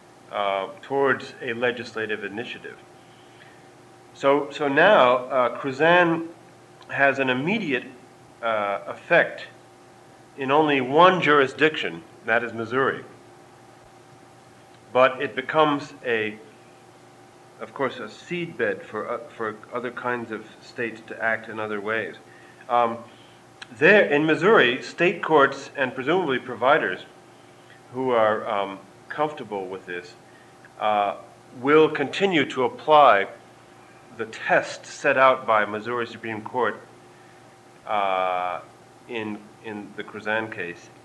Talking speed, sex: 110 wpm, male